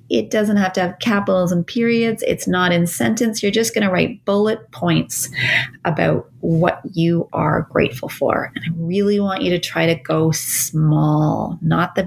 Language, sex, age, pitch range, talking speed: English, female, 30-49, 155-180 Hz, 185 wpm